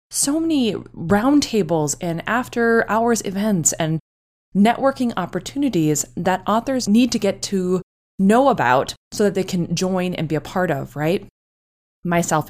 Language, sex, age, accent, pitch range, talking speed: English, female, 20-39, American, 165-225 Hz, 145 wpm